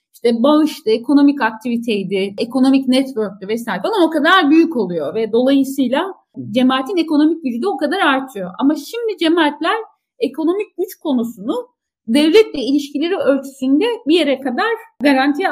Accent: native